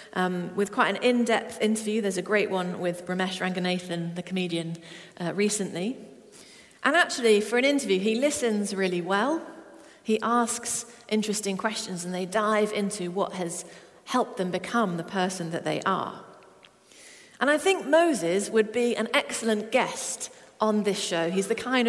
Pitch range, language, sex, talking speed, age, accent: 190-240 Hz, English, female, 160 wpm, 40-59, British